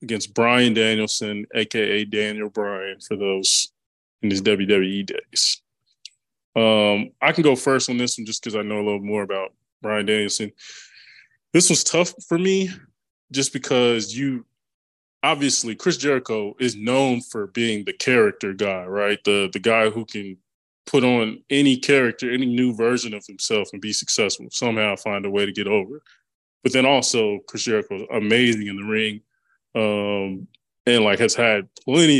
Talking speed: 170 wpm